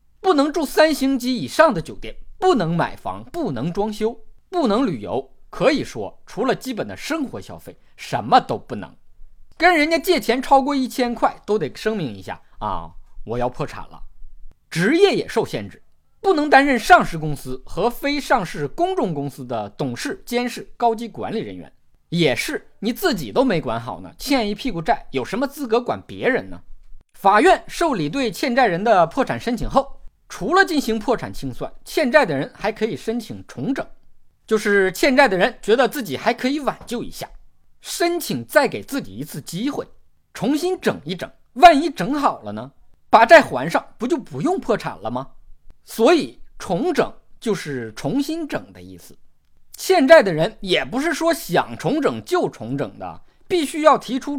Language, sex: Chinese, male